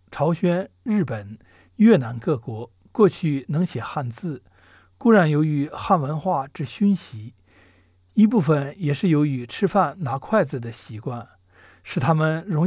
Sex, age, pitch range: male, 60-79, 110-175 Hz